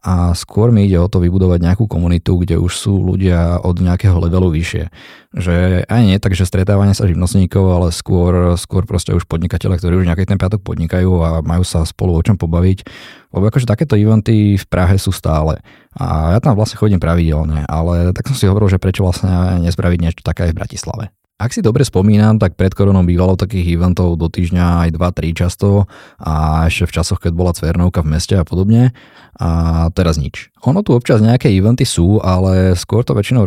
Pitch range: 85-100 Hz